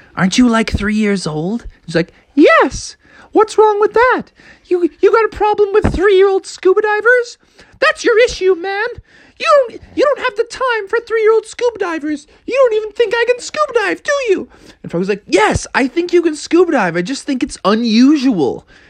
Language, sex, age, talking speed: English, male, 20-39, 195 wpm